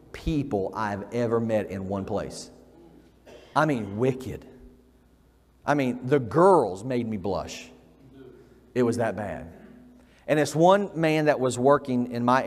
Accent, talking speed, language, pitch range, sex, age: American, 145 wpm, English, 115-145 Hz, male, 40-59